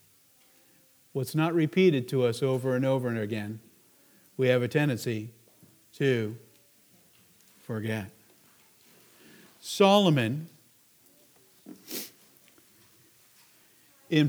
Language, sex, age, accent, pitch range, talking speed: English, male, 50-69, American, 130-180 Hz, 75 wpm